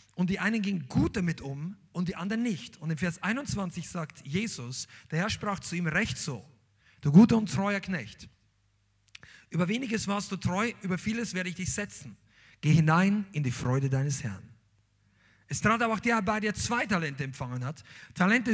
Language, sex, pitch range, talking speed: German, male, 125-200 Hz, 195 wpm